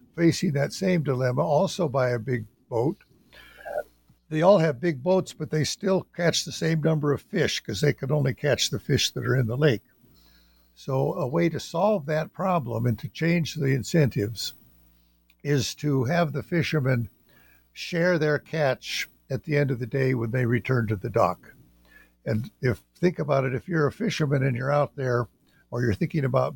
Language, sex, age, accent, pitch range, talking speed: English, male, 60-79, American, 125-160 Hz, 190 wpm